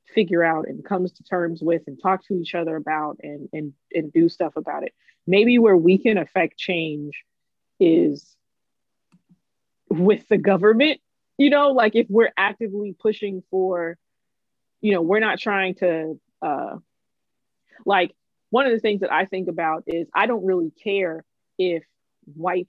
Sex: female